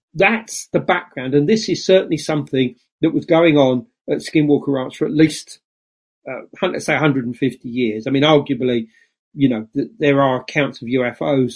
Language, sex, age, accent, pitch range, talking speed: English, male, 40-59, British, 125-150 Hz, 175 wpm